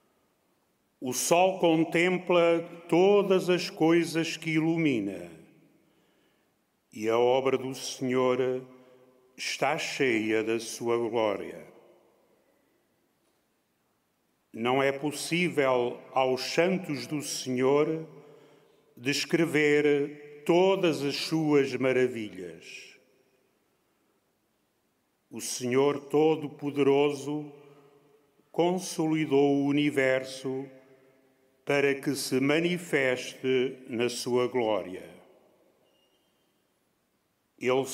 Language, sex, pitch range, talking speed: Portuguese, male, 130-165 Hz, 70 wpm